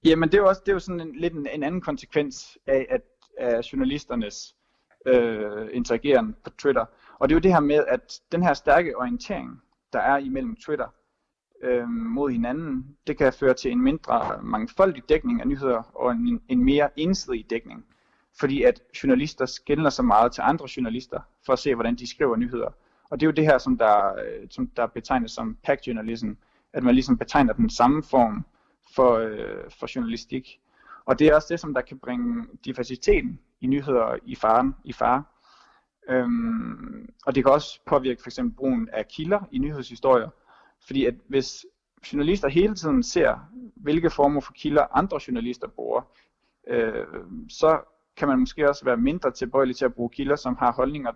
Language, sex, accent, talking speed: Danish, male, native, 180 wpm